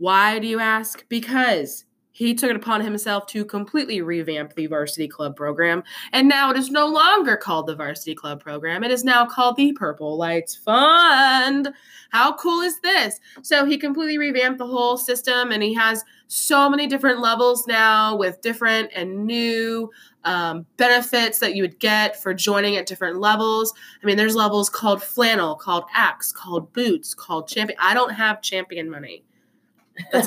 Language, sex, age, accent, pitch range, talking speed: English, female, 20-39, American, 180-245 Hz, 175 wpm